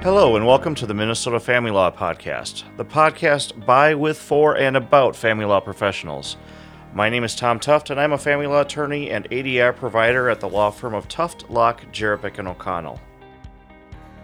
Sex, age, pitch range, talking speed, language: male, 40-59, 105-125 Hz, 180 wpm, English